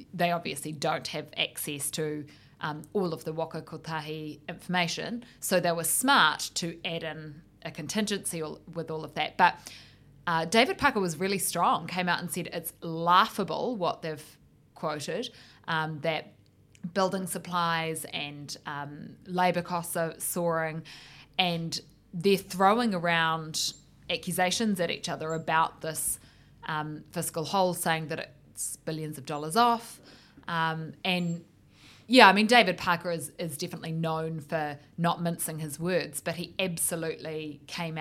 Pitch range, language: 150-175 Hz, English